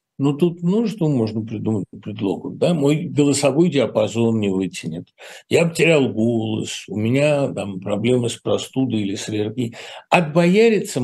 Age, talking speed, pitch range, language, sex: 60-79, 140 wpm, 110-150 Hz, Russian, male